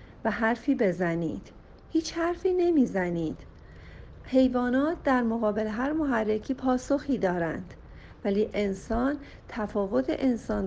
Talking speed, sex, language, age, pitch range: 95 wpm, female, Persian, 50-69, 185-265 Hz